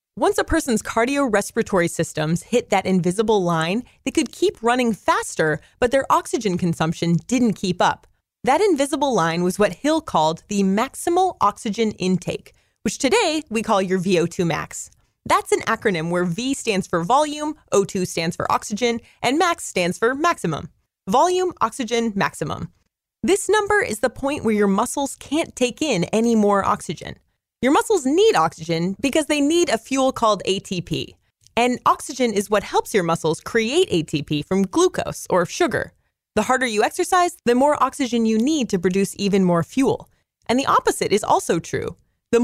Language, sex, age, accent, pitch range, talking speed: English, female, 30-49, American, 185-295 Hz, 165 wpm